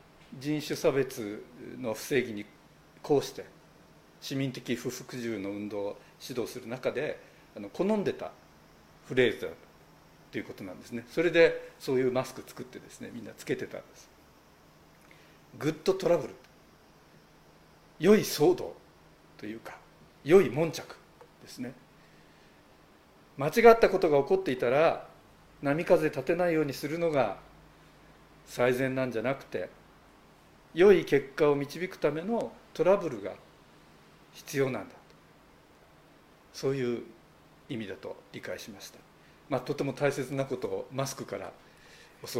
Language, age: Japanese, 50-69